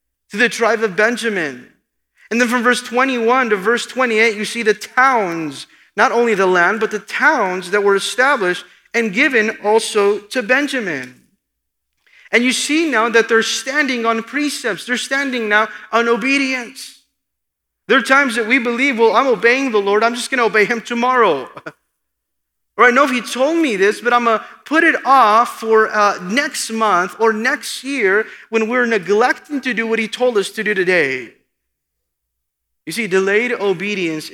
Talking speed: 175 wpm